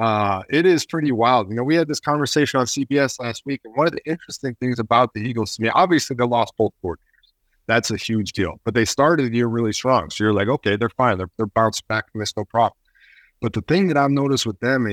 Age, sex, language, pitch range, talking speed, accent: 30-49, male, English, 105-130 Hz, 265 wpm, American